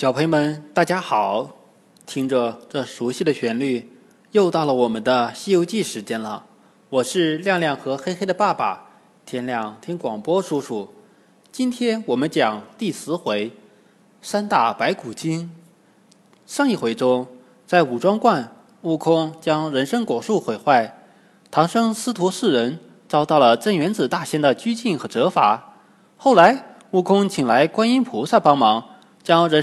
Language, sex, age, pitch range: Chinese, male, 20-39, 135-220 Hz